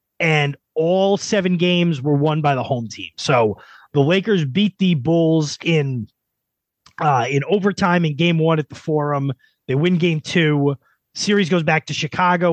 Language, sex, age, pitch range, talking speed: English, male, 30-49, 140-180 Hz, 170 wpm